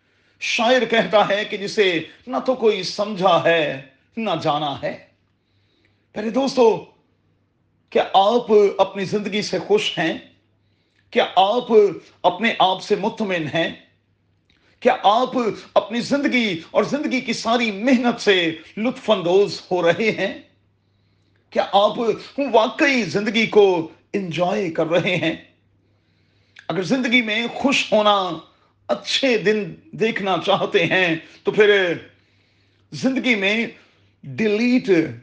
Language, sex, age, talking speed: Urdu, male, 40-59, 115 wpm